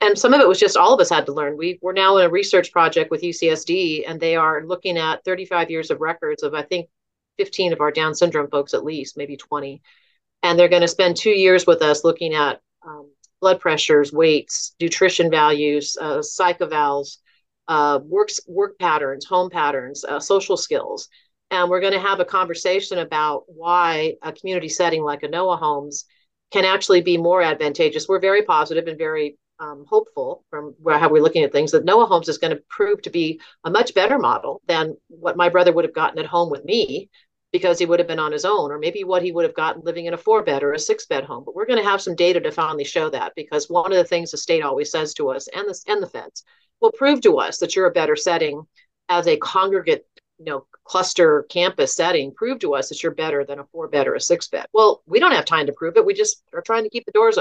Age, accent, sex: 40-59, American, female